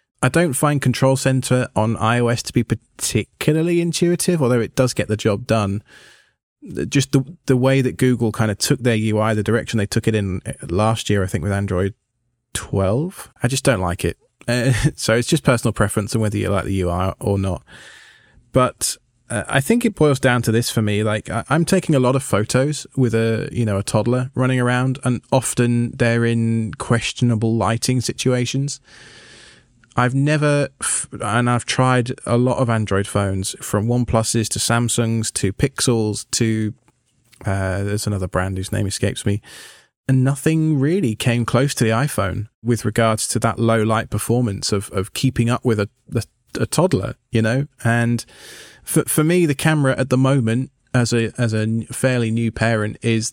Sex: male